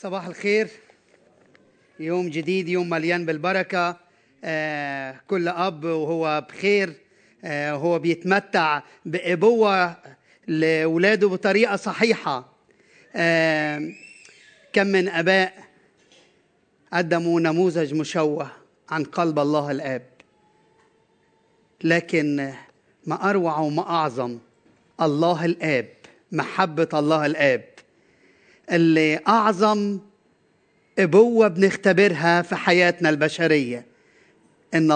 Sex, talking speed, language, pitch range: male, 75 wpm, Arabic, 155-185 Hz